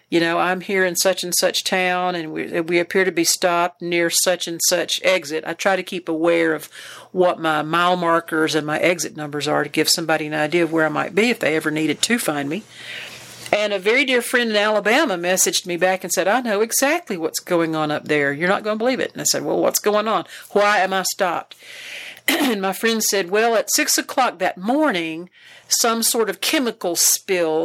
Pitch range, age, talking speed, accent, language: 170-210 Hz, 50-69, 230 wpm, American, English